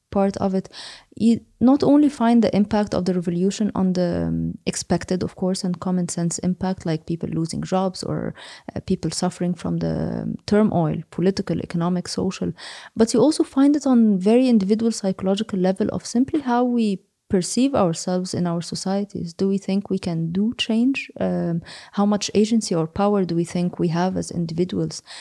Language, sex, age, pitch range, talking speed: Danish, female, 20-39, 180-230 Hz, 180 wpm